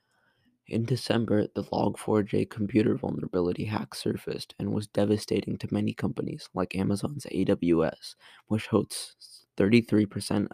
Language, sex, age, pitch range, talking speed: English, male, 20-39, 95-110 Hz, 115 wpm